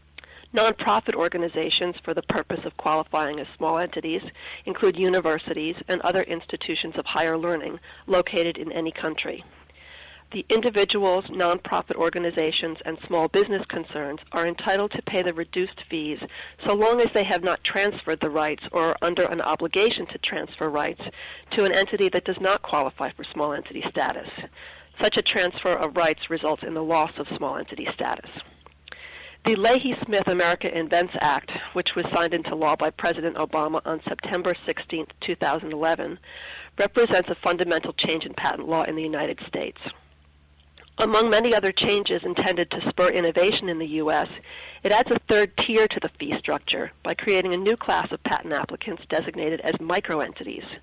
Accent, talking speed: American, 165 wpm